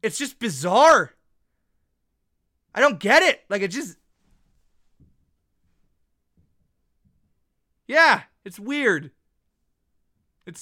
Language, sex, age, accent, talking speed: English, male, 30-49, American, 80 wpm